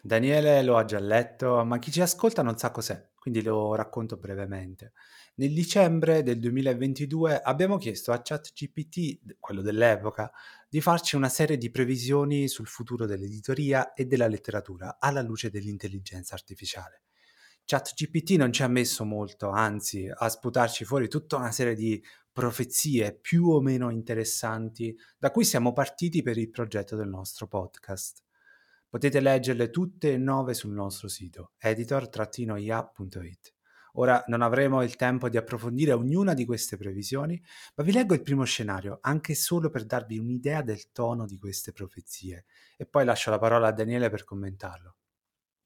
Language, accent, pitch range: Italian, native, 110-140 Hz